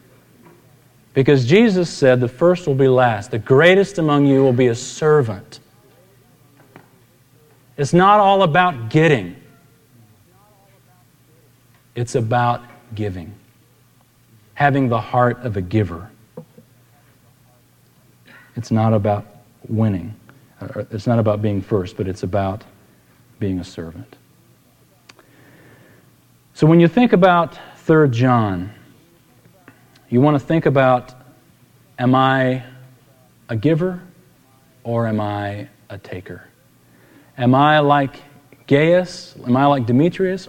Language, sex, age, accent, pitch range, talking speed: English, male, 40-59, American, 110-135 Hz, 110 wpm